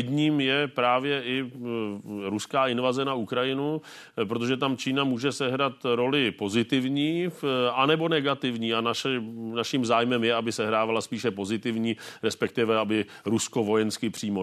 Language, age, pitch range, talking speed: Czech, 40-59, 110-130 Hz, 135 wpm